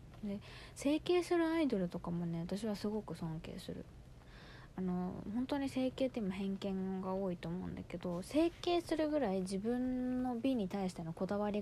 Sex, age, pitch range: female, 20-39, 175-225 Hz